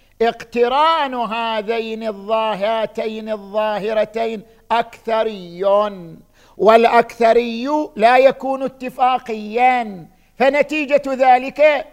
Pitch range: 155-230 Hz